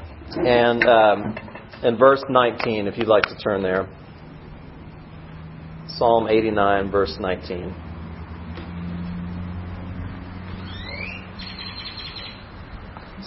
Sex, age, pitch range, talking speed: male, 40-59, 100-135 Hz, 70 wpm